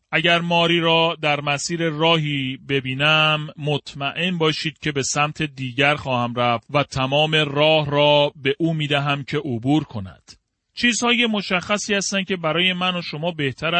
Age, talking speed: 30-49, 150 wpm